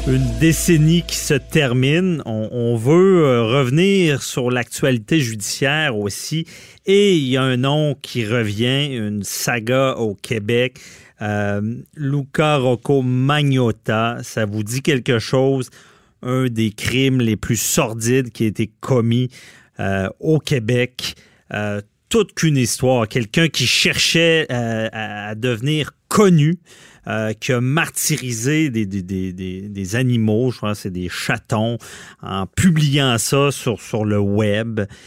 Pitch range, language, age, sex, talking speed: 110-140 Hz, French, 40-59, male, 135 wpm